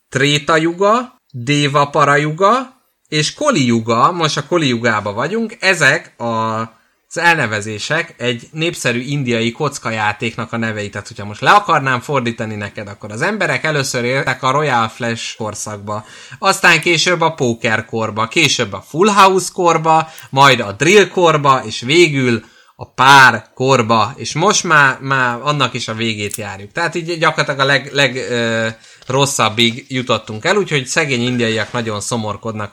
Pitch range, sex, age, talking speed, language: 115-155 Hz, male, 20-39, 150 wpm, Hungarian